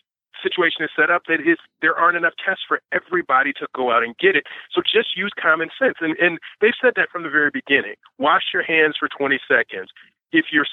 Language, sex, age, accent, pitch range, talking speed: English, male, 40-59, American, 155-260 Hz, 225 wpm